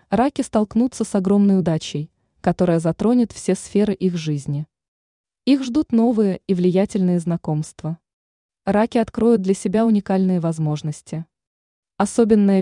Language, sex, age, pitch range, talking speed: Russian, female, 20-39, 175-220 Hz, 115 wpm